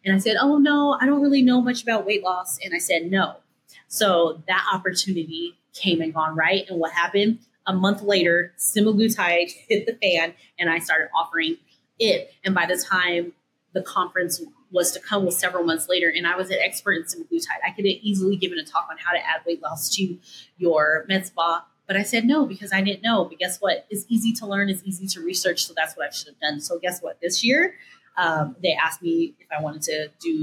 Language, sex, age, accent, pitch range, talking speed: English, female, 30-49, American, 170-215 Hz, 230 wpm